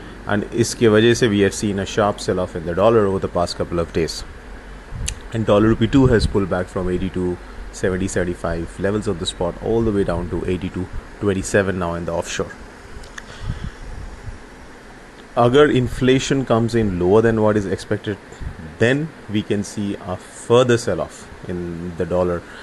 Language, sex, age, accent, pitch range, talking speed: English, male, 30-49, Indian, 90-110 Hz, 170 wpm